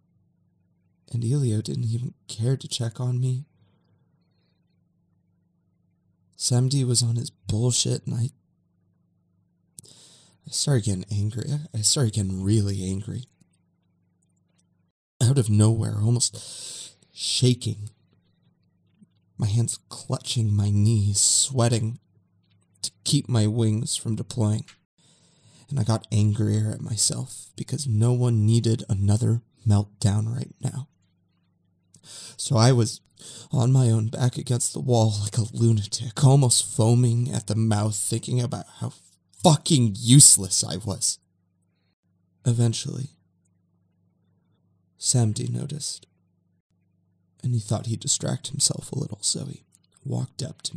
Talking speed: 115 wpm